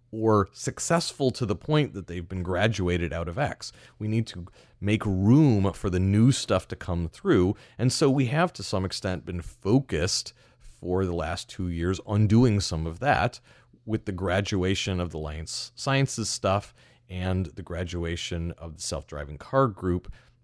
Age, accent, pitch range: 30-49, American, 90-115 Hz